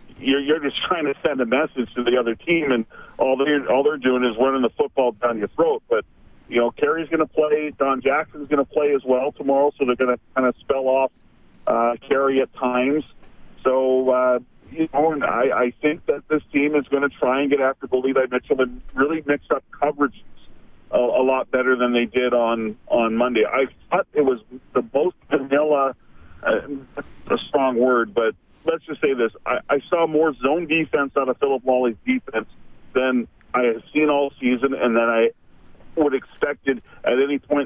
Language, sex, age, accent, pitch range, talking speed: English, male, 40-59, American, 125-145 Hz, 205 wpm